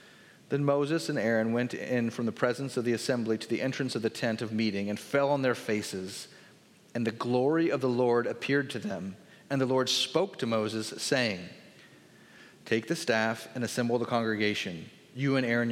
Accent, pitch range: American, 120-155 Hz